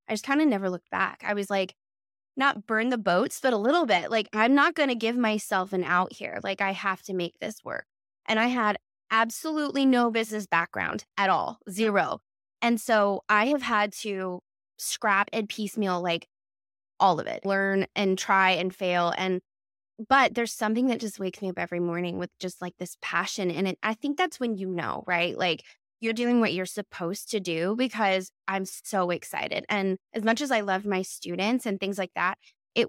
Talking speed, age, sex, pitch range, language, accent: 205 wpm, 20-39, female, 185-225 Hz, English, American